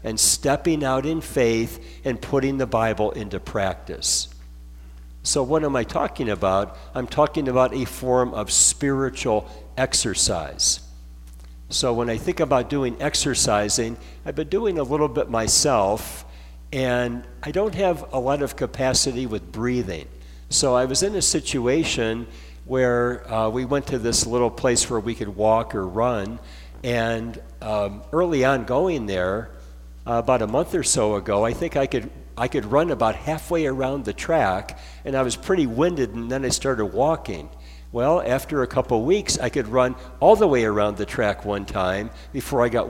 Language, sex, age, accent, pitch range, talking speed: English, male, 60-79, American, 100-135 Hz, 175 wpm